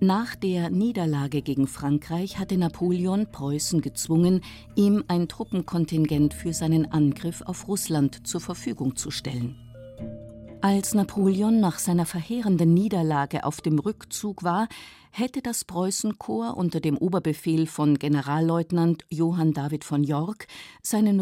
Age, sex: 50-69, female